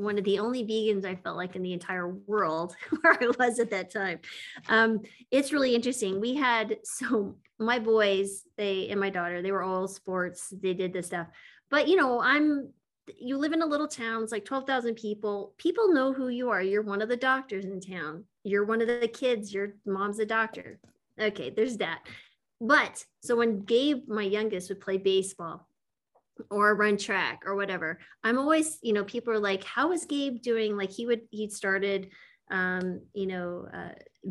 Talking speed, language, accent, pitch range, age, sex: 195 wpm, English, American, 195-245 Hz, 20-39, female